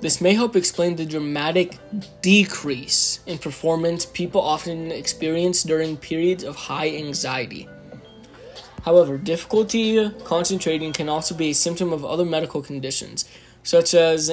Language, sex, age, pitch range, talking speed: English, male, 20-39, 155-180 Hz, 130 wpm